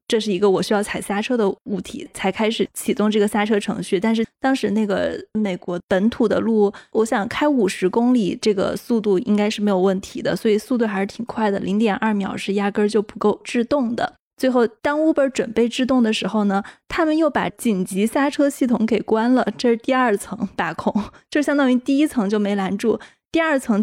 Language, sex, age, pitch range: Chinese, female, 20-39, 205-250 Hz